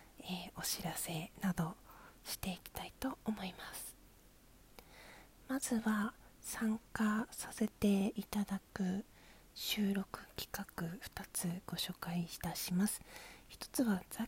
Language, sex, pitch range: Japanese, female, 190-235 Hz